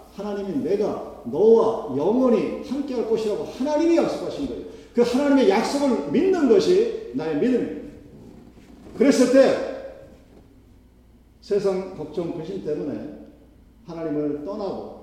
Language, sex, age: Korean, male, 40-59